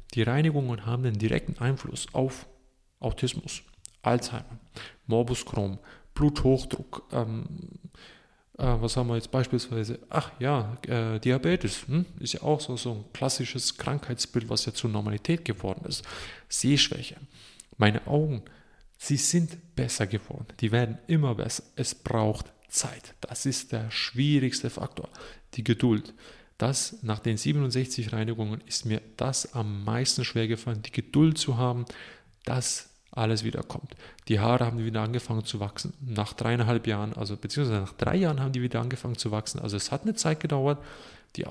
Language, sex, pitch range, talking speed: German, male, 110-135 Hz, 155 wpm